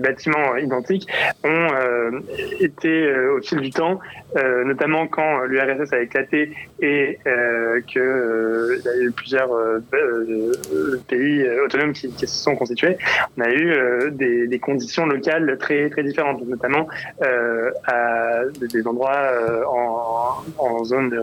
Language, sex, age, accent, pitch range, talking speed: French, male, 20-39, French, 125-155 Hz, 145 wpm